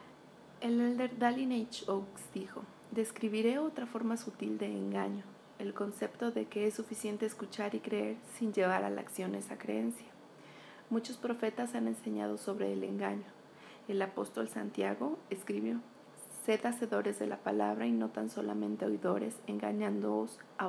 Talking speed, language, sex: 150 wpm, Spanish, female